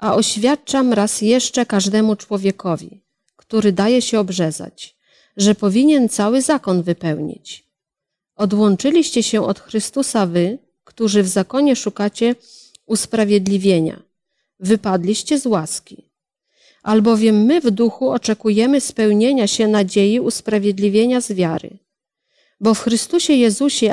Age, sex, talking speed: 40-59, female, 110 wpm